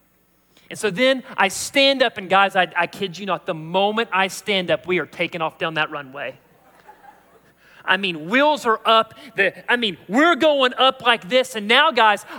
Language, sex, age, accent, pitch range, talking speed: English, male, 30-49, American, 230-385 Hz, 200 wpm